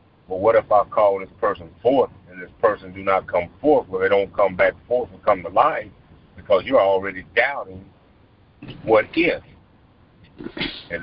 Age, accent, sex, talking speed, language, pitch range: 50-69, American, male, 180 wpm, English, 85-100 Hz